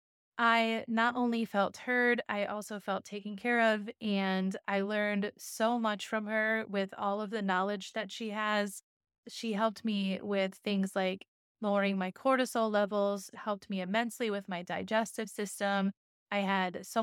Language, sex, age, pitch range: English, female, 20-39, 200-230 Hz